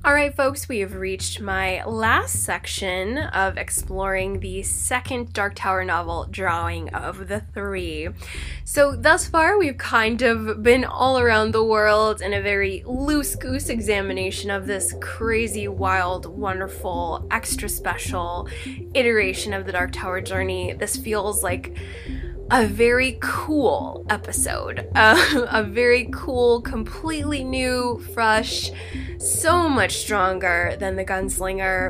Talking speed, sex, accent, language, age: 130 wpm, female, American, English, 10-29